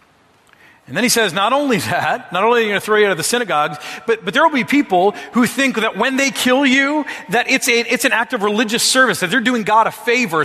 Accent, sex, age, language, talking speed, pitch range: American, male, 40-59, English, 265 wpm, 170-245 Hz